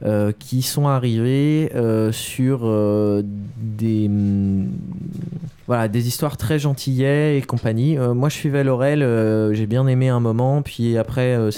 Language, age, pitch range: French, 20-39, 110-135 Hz